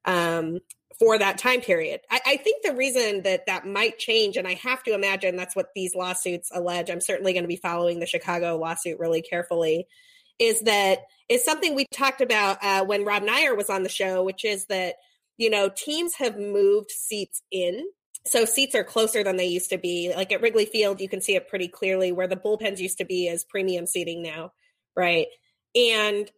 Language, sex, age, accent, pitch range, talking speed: English, female, 30-49, American, 180-230 Hz, 205 wpm